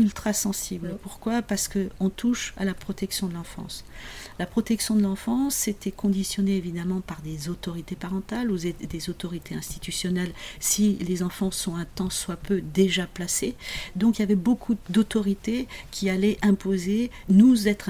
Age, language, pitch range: 40-59, French, 185-215 Hz